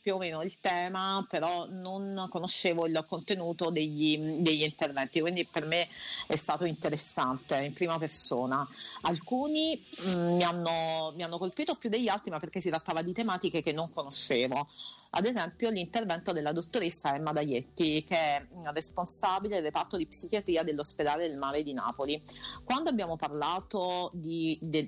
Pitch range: 150-190 Hz